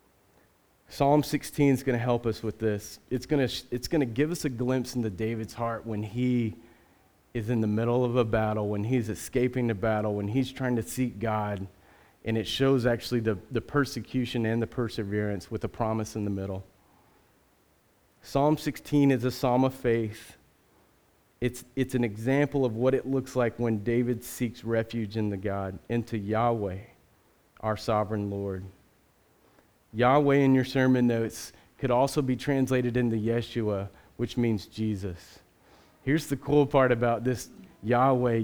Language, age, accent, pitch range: English, 40-59, American, 110-130 Hz